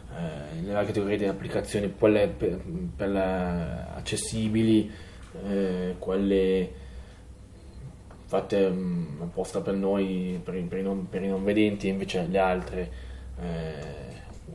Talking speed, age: 105 wpm, 20-39